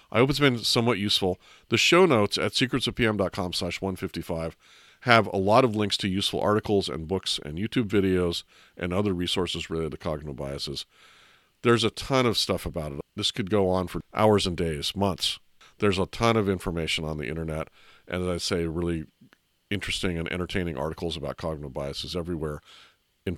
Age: 50-69